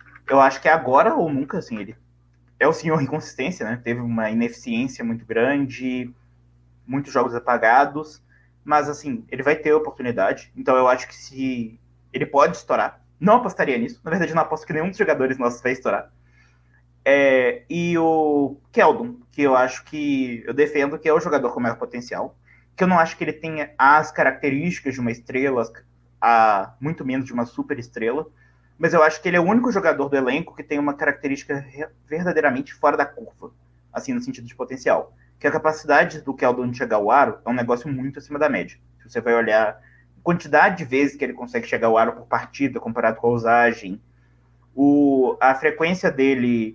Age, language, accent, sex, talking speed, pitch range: 20-39, Portuguese, Brazilian, male, 190 wpm, 115-155 Hz